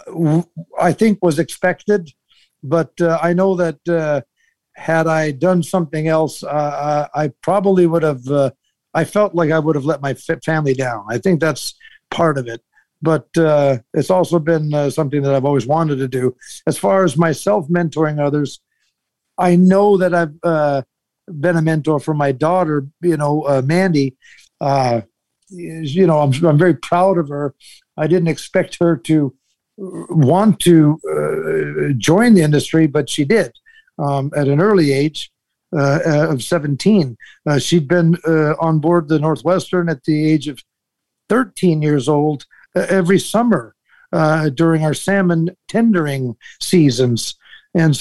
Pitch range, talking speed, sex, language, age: 145-180 Hz, 160 wpm, male, English, 60-79